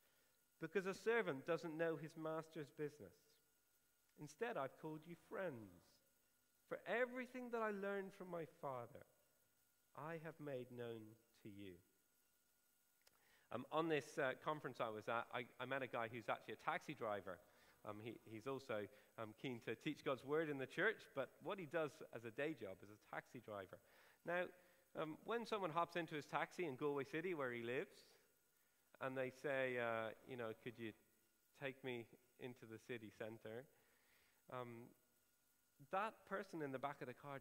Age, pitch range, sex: 40-59, 115-160 Hz, male